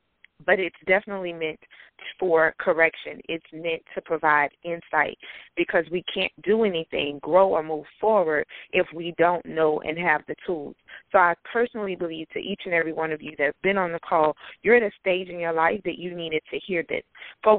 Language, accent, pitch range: English, American, 160-190 Hz